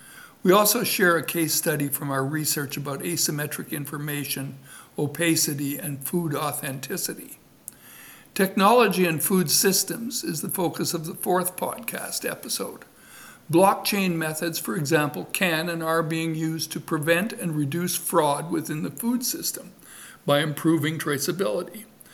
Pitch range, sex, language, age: 150-180 Hz, male, English, 60-79